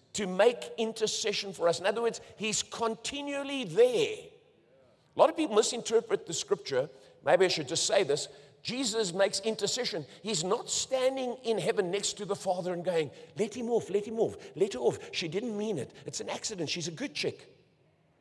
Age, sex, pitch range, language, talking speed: 50-69, male, 145-225 Hz, English, 190 wpm